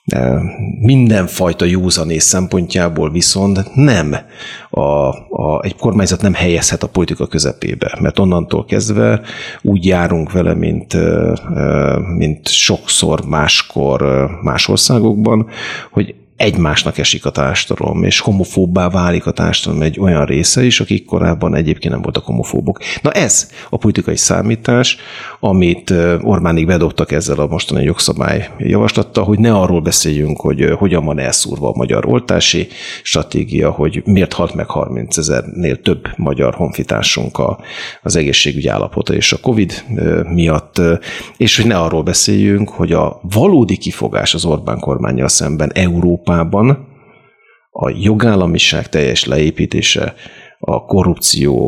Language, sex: Hungarian, male